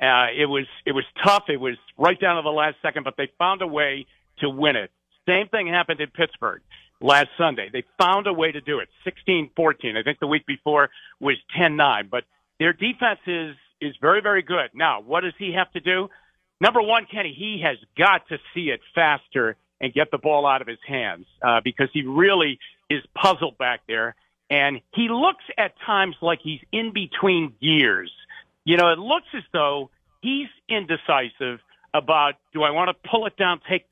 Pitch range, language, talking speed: 145-200 Hz, English, 200 wpm